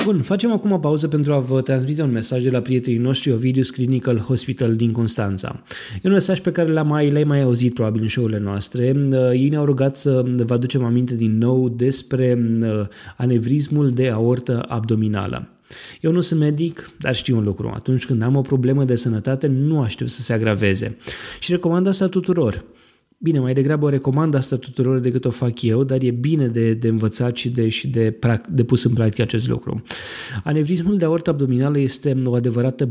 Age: 20-39